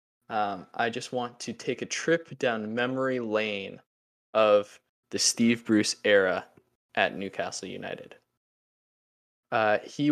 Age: 20-39